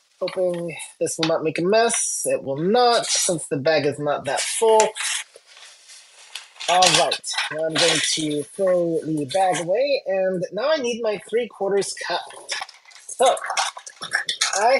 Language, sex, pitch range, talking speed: English, male, 165-220 Hz, 145 wpm